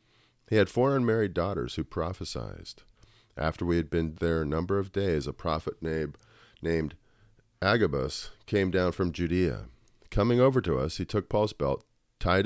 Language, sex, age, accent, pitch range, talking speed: English, male, 40-59, American, 80-105 Hz, 160 wpm